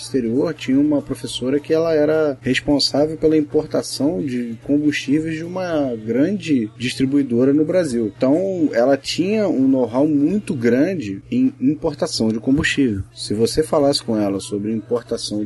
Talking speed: 140 wpm